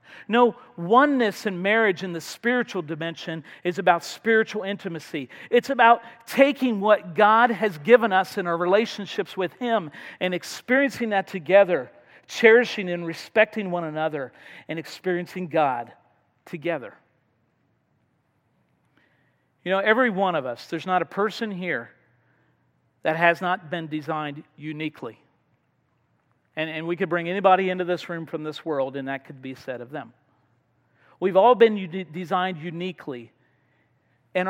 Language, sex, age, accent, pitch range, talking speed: English, male, 50-69, American, 155-205 Hz, 140 wpm